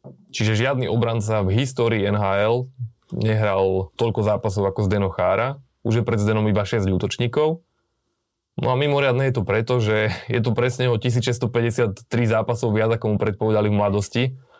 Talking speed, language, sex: 155 wpm, Slovak, male